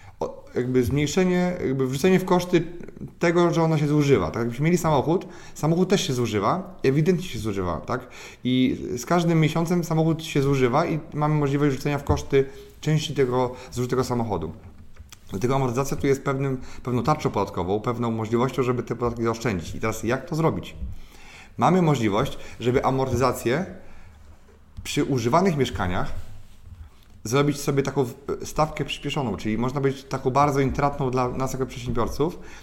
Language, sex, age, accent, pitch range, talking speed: Polish, male, 30-49, native, 115-155 Hz, 145 wpm